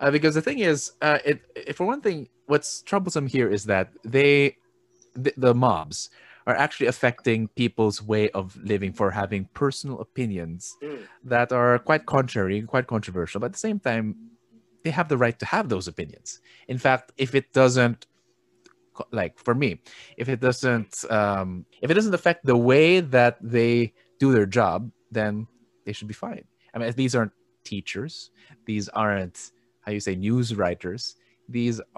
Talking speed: 175 wpm